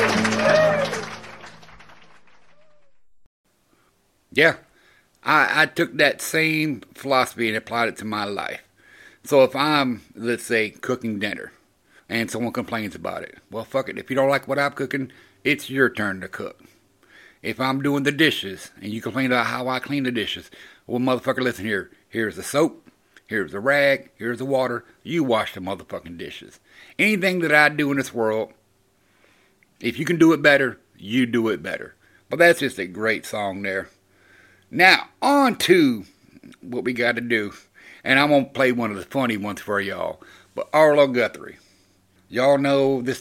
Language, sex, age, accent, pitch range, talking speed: English, male, 60-79, American, 105-140 Hz, 170 wpm